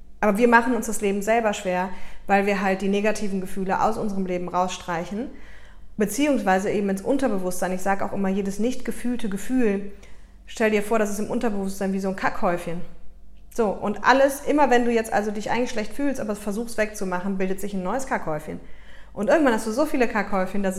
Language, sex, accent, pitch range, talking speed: German, female, German, 185-225 Hz, 200 wpm